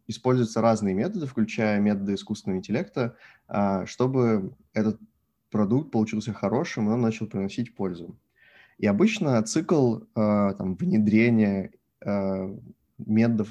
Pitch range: 100-120 Hz